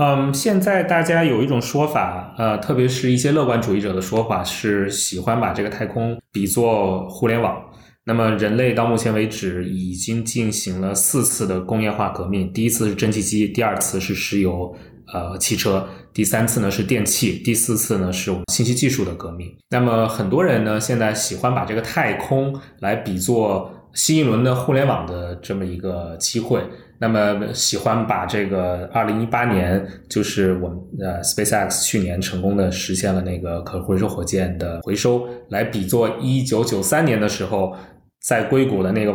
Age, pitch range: 20-39, 95-120 Hz